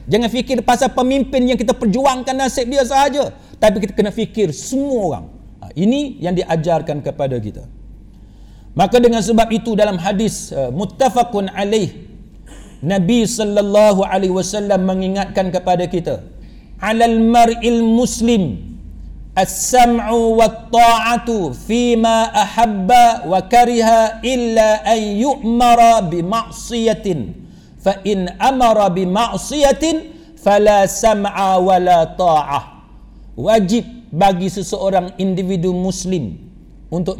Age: 50-69